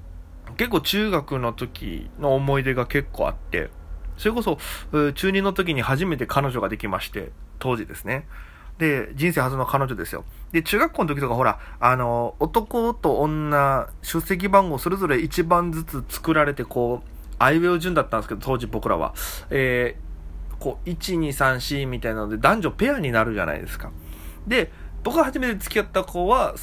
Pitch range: 115-175 Hz